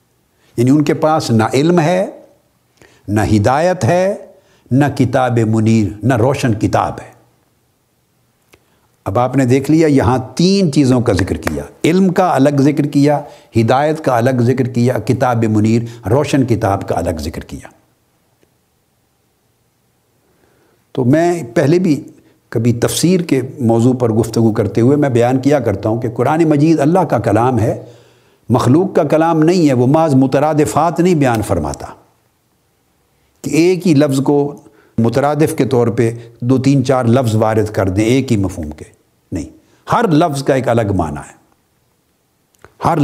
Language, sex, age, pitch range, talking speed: Urdu, male, 60-79, 115-150 Hz, 155 wpm